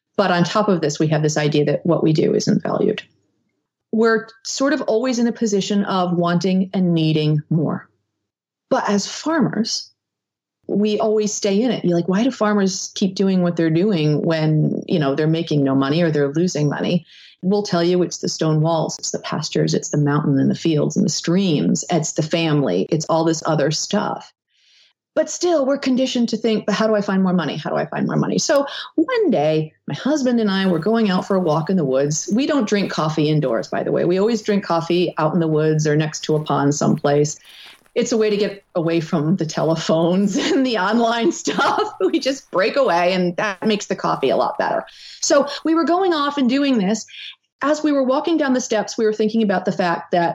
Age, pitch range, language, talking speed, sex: 40-59, 165-225 Hz, English, 225 wpm, female